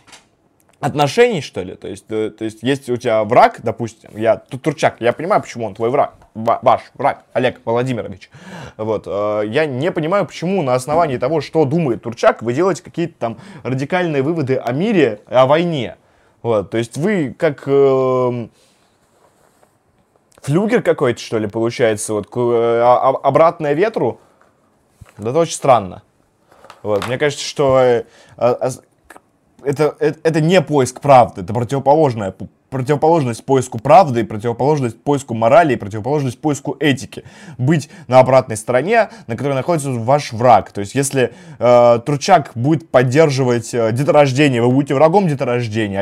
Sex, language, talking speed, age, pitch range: male, Russian, 145 wpm, 20-39, 120-155 Hz